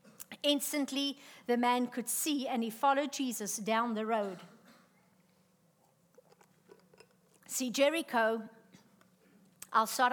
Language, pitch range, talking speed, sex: English, 220-275 Hz, 95 wpm, female